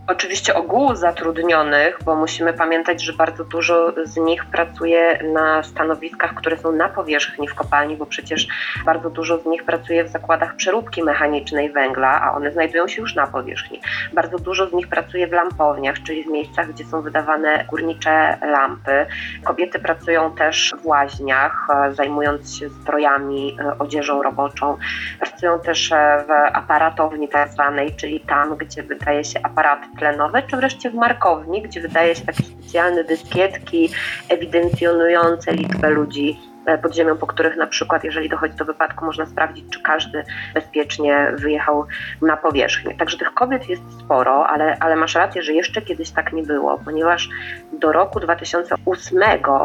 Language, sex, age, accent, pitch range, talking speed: Polish, female, 20-39, native, 150-170 Hz, 150 wpm